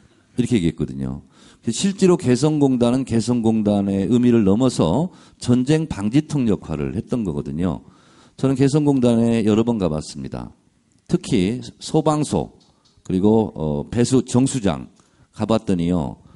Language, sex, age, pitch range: Korean, male, 50-69, 95-155 Hz